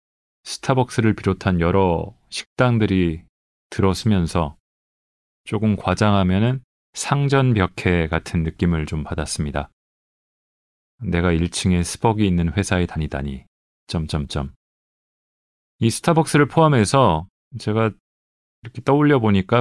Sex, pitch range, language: male, 85-120 Hz, Korean